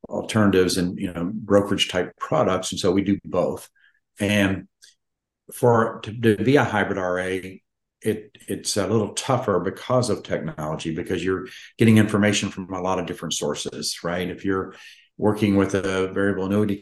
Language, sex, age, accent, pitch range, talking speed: English, male, 50-69, American, 90-105 Hz, 165 wpm